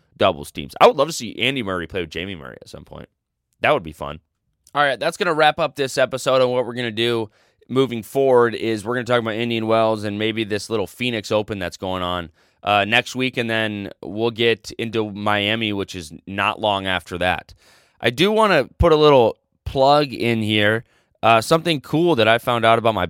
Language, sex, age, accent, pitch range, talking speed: English, male, 20-39, American, 95-120 Hz, 220 wpm